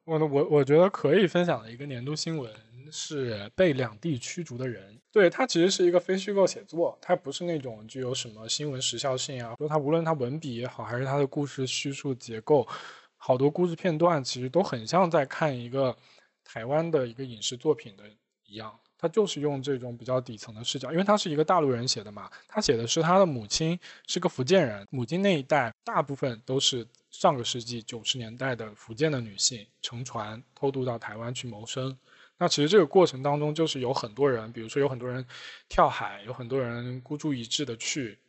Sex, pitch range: male, 120-150 Hz